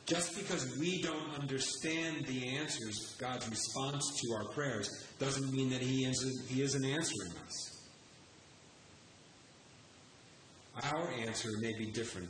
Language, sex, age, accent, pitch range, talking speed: English, male, 40-59, American, 110-135 Hz, 115 wpm